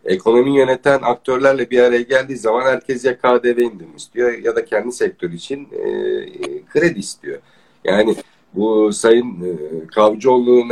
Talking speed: 135 wpm